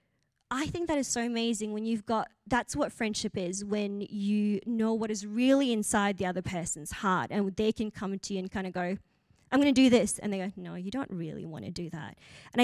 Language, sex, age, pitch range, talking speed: English, female, 20-39, 220-280 Hz, 240 wpm